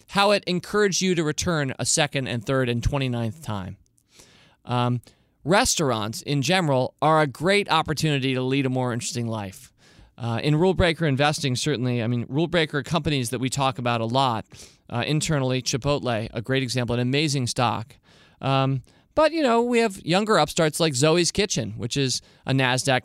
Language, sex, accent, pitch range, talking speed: English, male, American, 130-175 Hz, 175 wpm